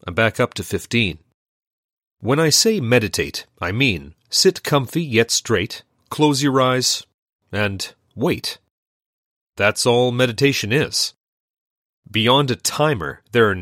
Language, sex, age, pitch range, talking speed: English, male, 40-59, 105-140 Hz, 130 wpm